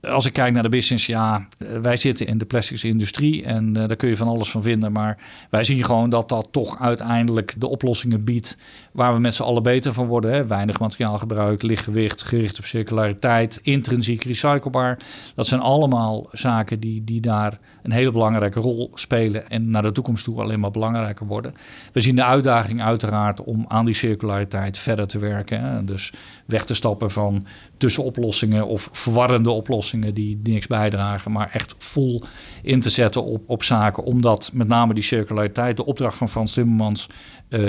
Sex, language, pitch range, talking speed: male, Dutch, 105-120 Hz, 185 wpm